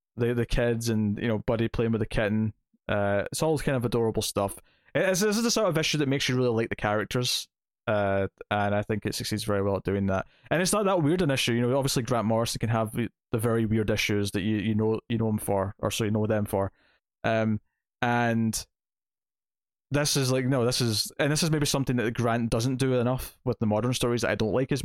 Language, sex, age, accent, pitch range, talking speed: English, male, 20-39, British, 105-125 Hz, 245 wpm